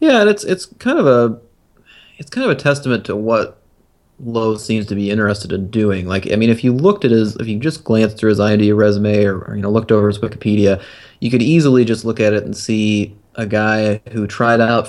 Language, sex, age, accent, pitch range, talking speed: English, male, 30-49, American, 100-115 Hz, 240 wpm